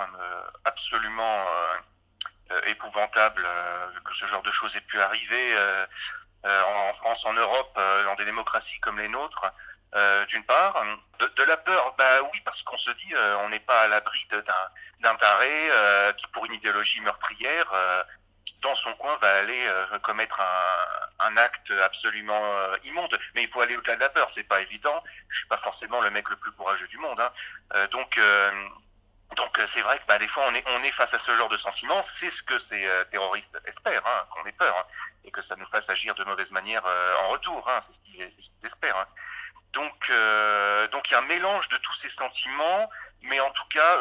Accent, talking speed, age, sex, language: French, 215 wpm, 40-59, male, French